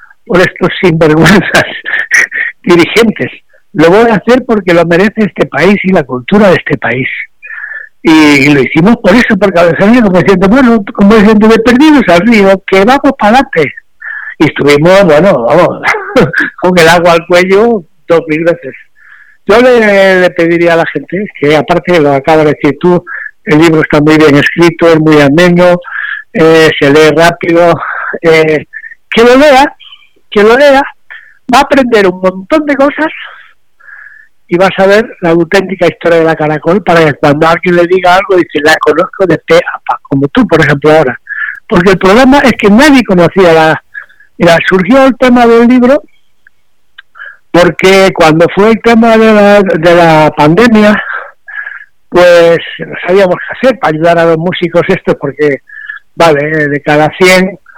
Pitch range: 165-235 Hz